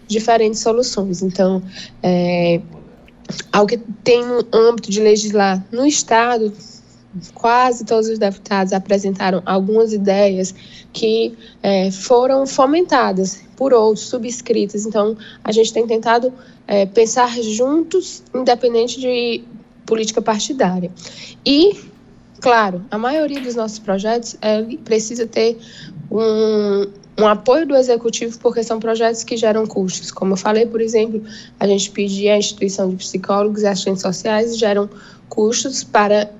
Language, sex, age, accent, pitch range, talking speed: Portuguese, female, 10-29, Brazilian, 205-240 Hz, 130 wpm